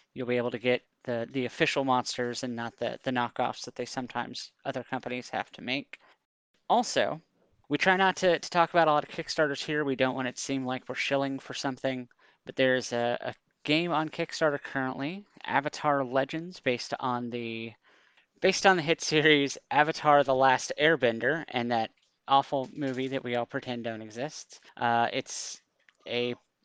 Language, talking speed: English, 180 wpm